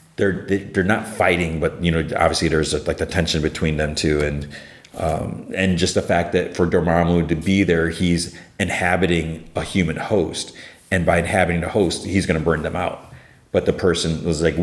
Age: 30-49